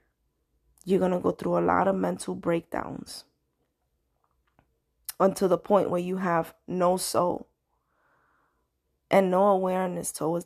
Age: 20-39